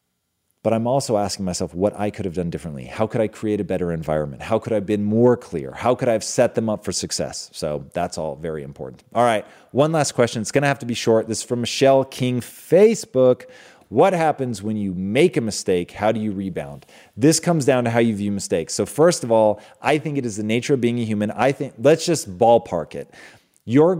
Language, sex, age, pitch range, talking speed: English, male, 30-49, 105-145 Hz, 245 wpm